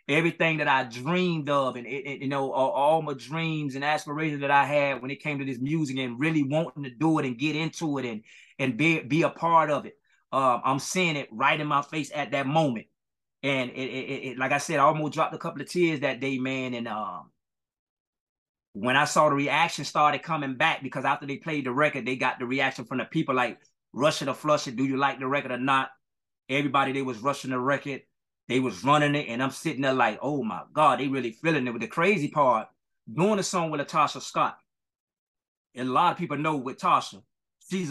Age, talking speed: 20-39, 235 wpm